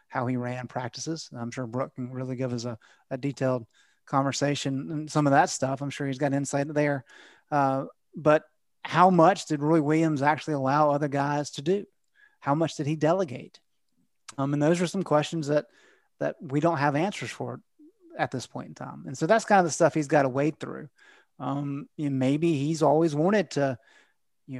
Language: English